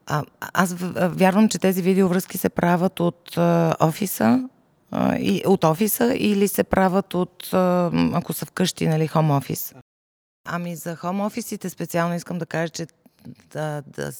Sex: female